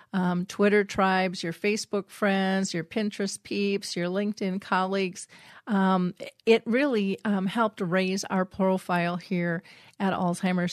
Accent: American